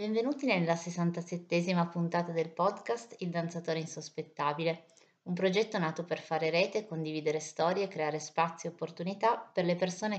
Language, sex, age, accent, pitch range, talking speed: Italian, female, 30-49, native, 155-185 Hz, 140 wpm